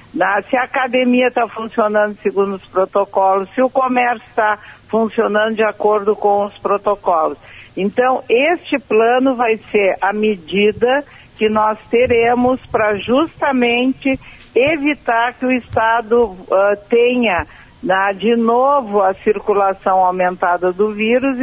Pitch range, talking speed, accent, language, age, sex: 195-245 Hz, 120 wpm, Brazilian, Portuguese, 50-69, female